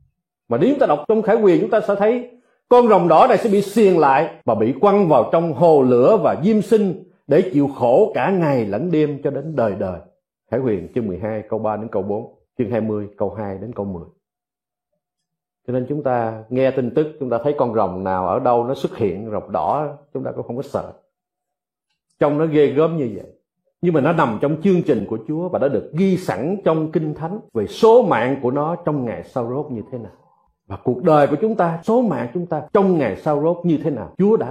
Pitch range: 130-215 Hz